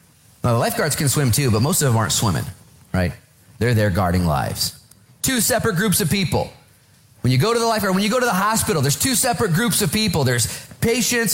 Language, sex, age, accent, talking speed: English, male, 30-49, American, 220 wpm